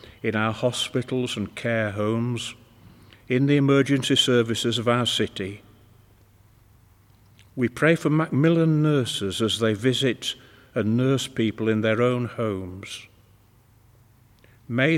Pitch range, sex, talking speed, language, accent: 105-125 Hz, male, 115 wpm, English, British